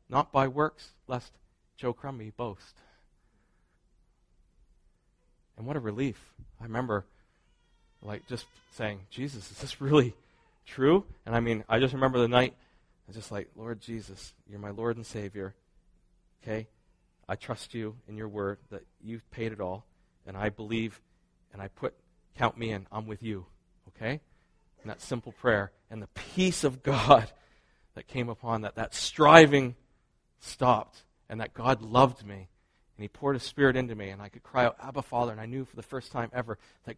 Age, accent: 40-59, American